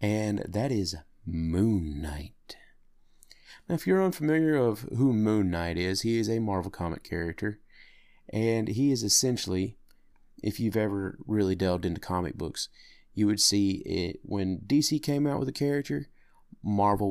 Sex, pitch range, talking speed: male, 90-110 Hz, 155 wpm